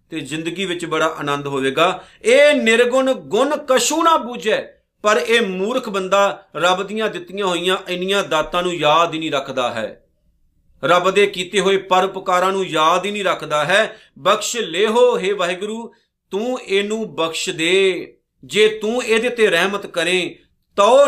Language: Punjabi